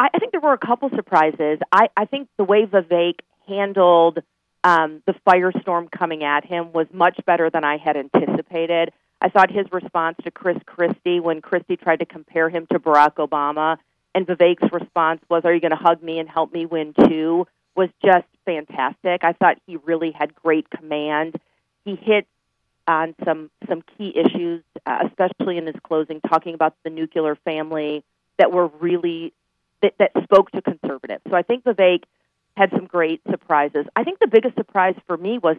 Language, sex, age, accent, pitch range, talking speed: English, female, 40-59, American, 160-200 Hz, 185 wpm